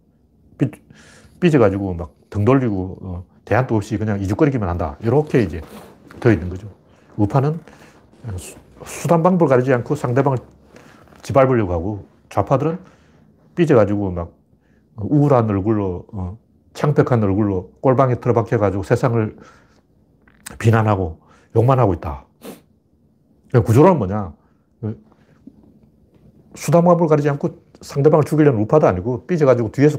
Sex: male